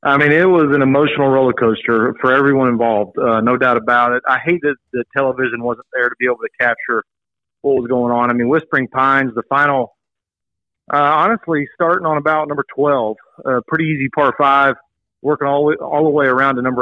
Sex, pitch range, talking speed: male, 125-155 Hz, 205 wpm